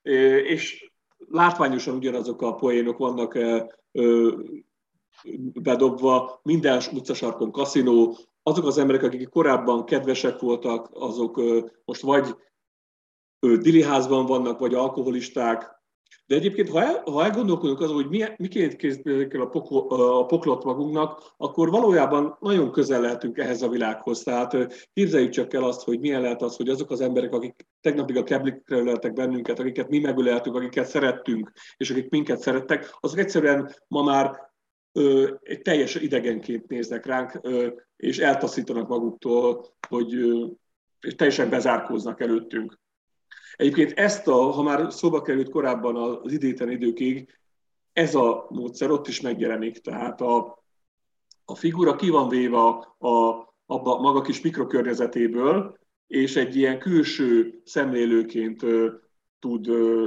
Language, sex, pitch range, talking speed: Hungarian, male, 120-145 Hz, 130 wpm